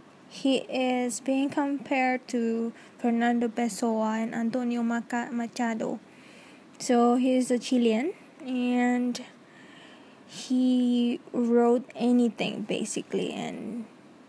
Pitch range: 230-270 Hz